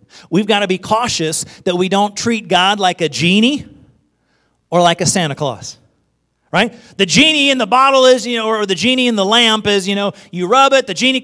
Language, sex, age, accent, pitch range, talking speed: English, male, 40-59, American, 160-245 Hz, 220 wpm